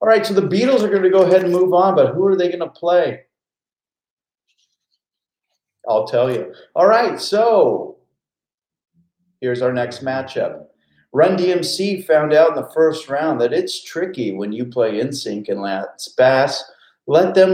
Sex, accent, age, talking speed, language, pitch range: male, American, 40-59, 165 wpm, English, 125-195 Hz